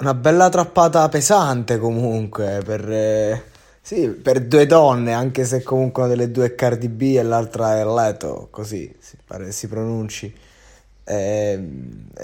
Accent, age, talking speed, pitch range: native, 20-39, 130 wpm, 105-130 Hz